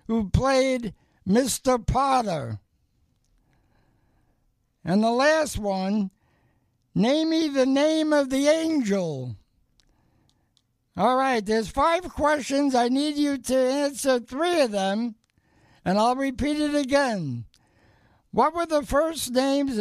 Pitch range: 195-275 Hz